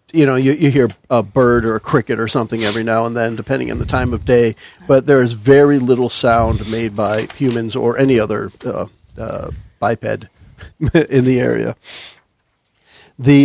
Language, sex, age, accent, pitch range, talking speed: English, male, 50-69, American, 115-140 Hz, 185 wpm